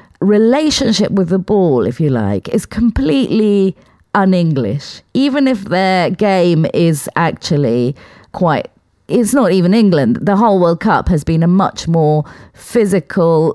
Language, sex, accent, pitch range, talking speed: English, female, British, 150-205 Hz, 140 wpm